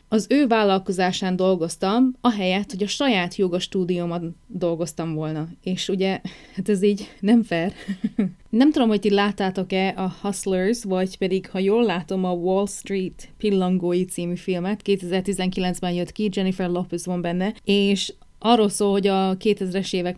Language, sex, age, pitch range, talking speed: Hungarian, female, 30-49, 185-205 Hz, 150 wpm